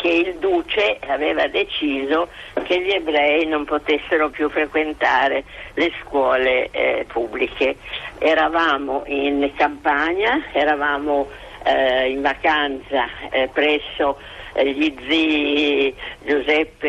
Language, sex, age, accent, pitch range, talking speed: Italian, female, 50-69, native, 135-165 Hz, 105 wpm